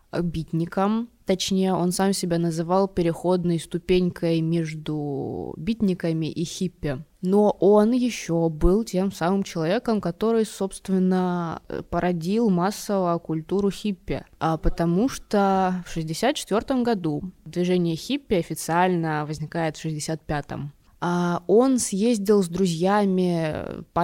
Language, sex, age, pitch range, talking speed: Russian, female, 20-39, 165-200 Hz, 105 wpm